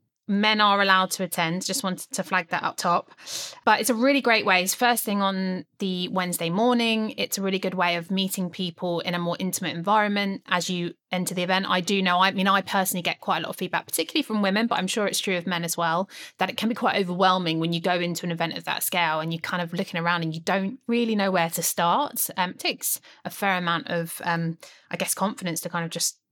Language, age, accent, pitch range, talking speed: English, 20-39, British, 170-200 Hz, 255 wpm